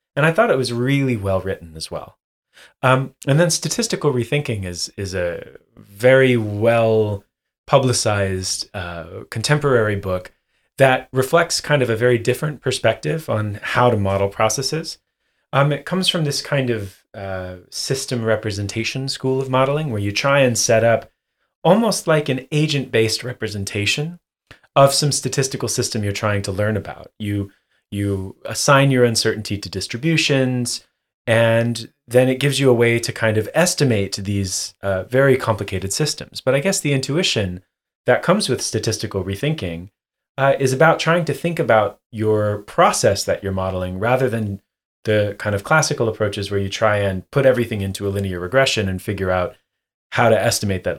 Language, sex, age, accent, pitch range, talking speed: English, male, 30-49, American, 100-135 Hz, 165 wpm